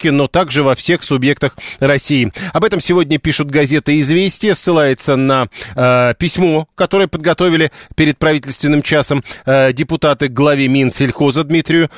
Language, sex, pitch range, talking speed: Russian, male, 140-170 Hz, 135 wpm